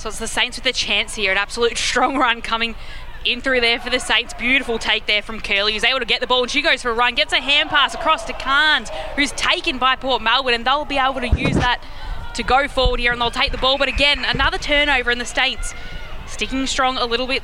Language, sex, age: English, female, 20-39